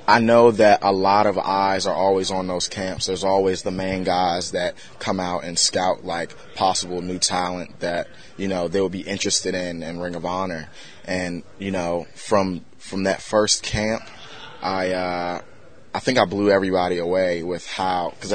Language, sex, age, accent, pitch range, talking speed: English, male, 20-39, American, 90-95 Hz, 185 wpm